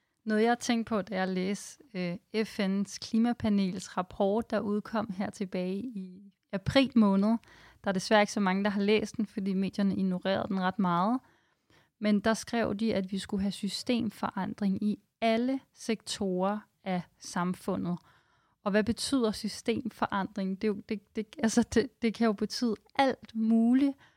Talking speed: 160 wpm